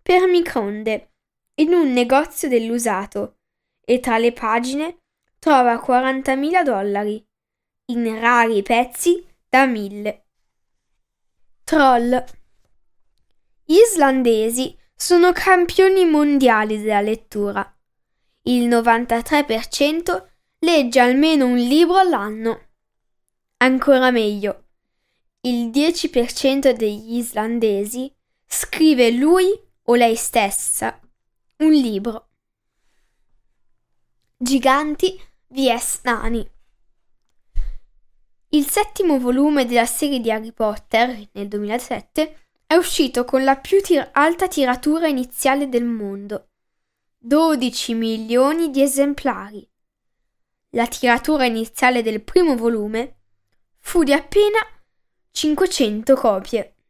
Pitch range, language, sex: 225-300 Hz, Italian, female